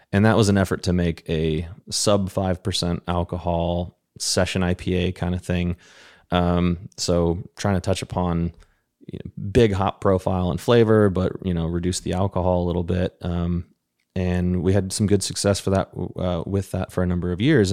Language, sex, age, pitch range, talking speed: English, male, 30-49, 85-95 Hz, 180 wpm